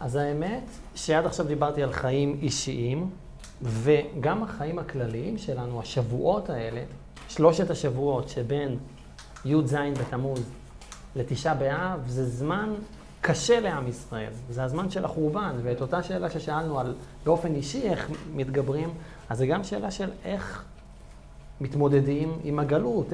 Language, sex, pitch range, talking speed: Hebrew, male, 125-170 Hz, 125 wpm